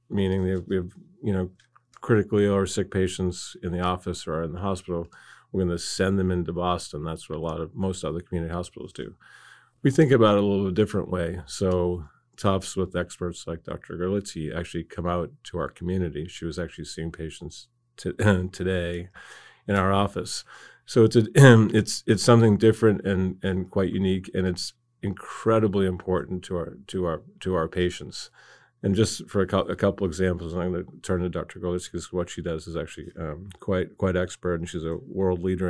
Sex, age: male, 40-59